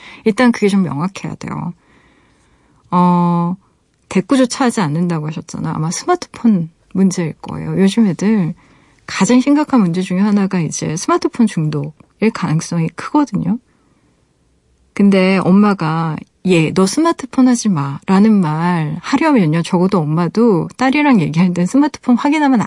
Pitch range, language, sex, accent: 165-230 Hz, Korean, female, native